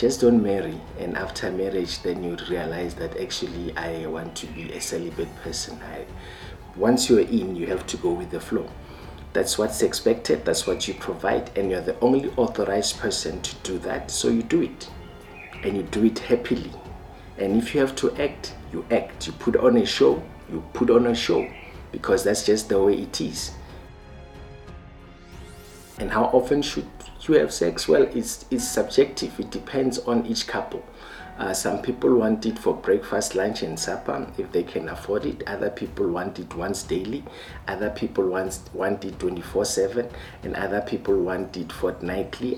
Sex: male